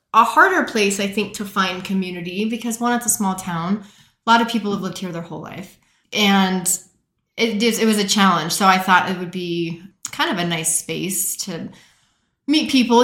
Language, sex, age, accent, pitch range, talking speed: English, female, 30-49, American, 175-220 Hz, 200 wpm